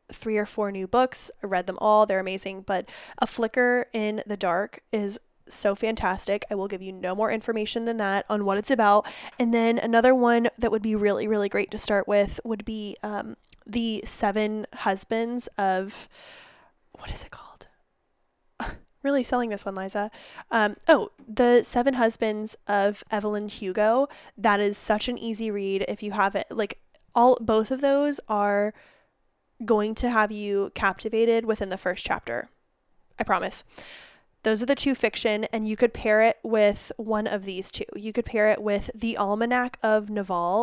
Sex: female